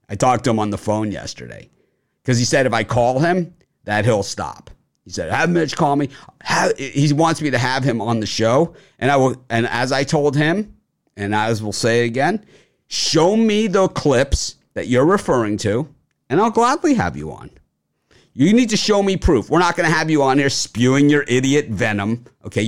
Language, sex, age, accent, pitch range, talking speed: English, male, 50-69, American, 100-140 Hz, 210 wpm